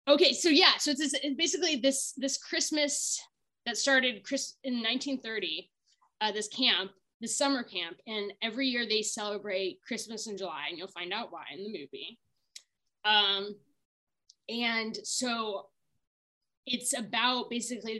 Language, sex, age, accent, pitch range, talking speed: English, female, 20-39, American, 185-245 Hz, 150 wpm